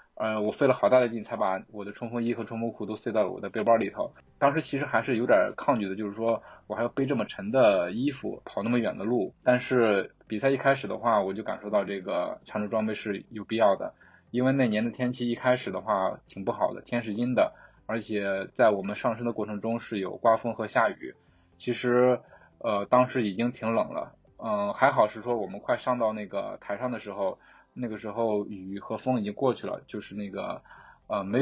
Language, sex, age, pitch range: Chinese, male, 20-39, 105-125 Hz